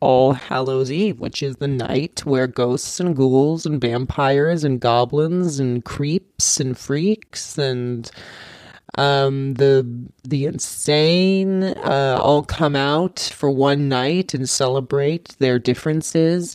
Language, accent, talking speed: English, American, 125 wpm